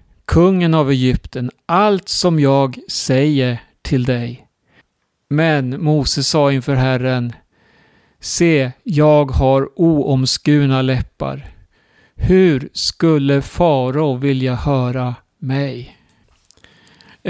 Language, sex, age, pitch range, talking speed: Swedish, male, 50-69, 135-180 Hz, 90 wpm